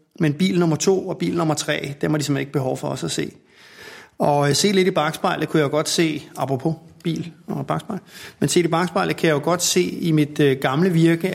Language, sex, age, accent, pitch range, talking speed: Danish, male, 30-49, native, 150-170 Hz, 240 wpm